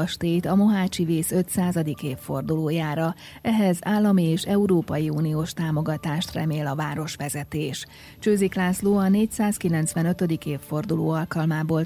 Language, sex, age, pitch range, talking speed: Hungarian, female, 30-49, 150-180 Hz, 100 wpm